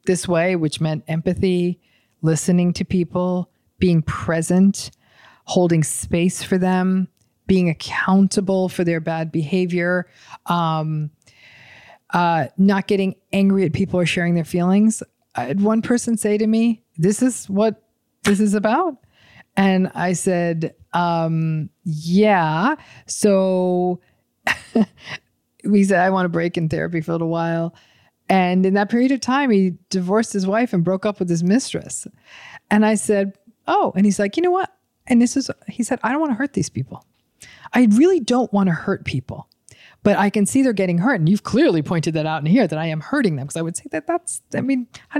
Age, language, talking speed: 40-59, English, 180 wpm